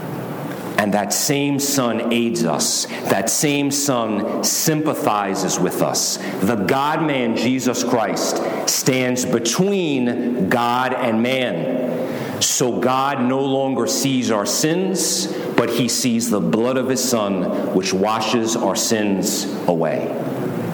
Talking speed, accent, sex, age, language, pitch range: 120 wpm, American, male, 50-69, English, 115-140 Hz